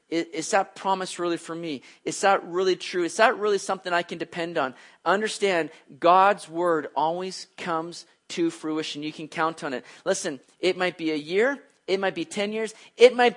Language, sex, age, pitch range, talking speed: English, male, 40-59, 155-200 Hz, 195 wpm